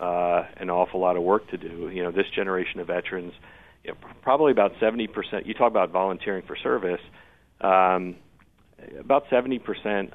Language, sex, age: English, male, 40-59